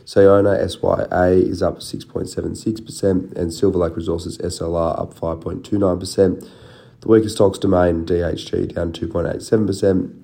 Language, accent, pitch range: English, Australian, 85-95 Hz